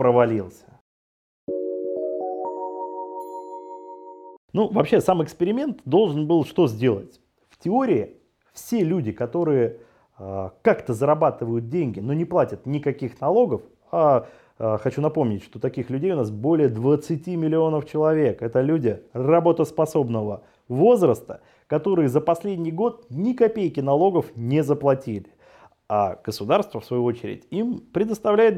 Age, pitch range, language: 30-49, 110-170 Hz, Russian